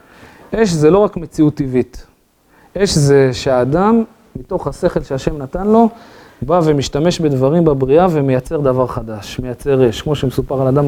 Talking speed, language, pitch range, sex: 150 wpm, Hebrew, 140-185 Hz, male